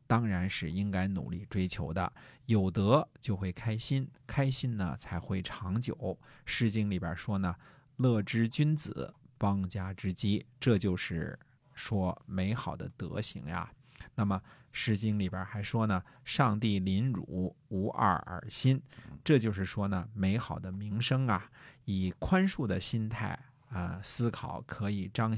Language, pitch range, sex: Chinese, 95-120 Hz, male